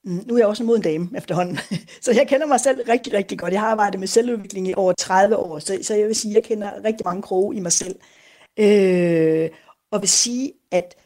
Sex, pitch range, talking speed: female, 185-235 Hz, 235 wpm